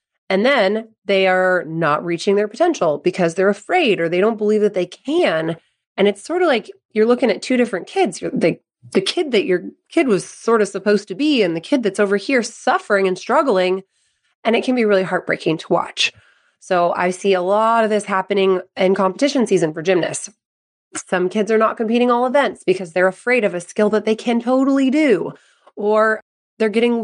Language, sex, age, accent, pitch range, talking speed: English, female, 20-39, American, 190-240 Hz, 205 wpm